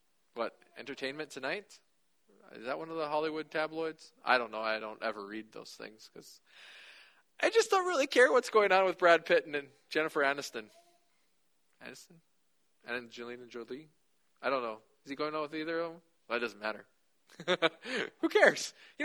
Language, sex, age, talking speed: English, male, 20-39, 185 wpm